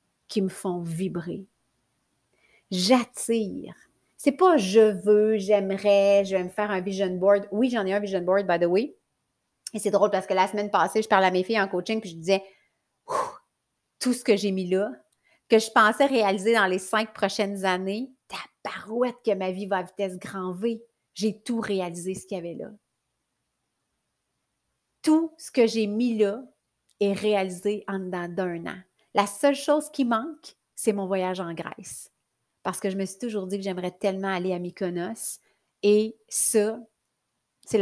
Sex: female